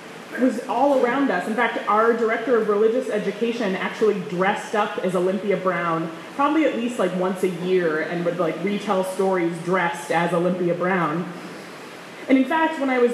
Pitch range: 180-235 Hz